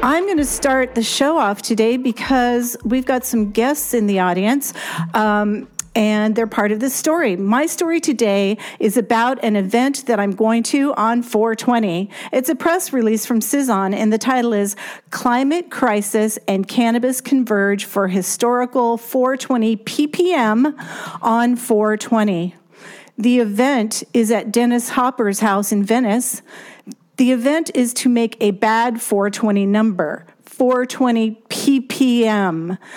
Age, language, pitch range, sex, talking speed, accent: 50-69, English, 215-260 Hz, female, 140 wpm, American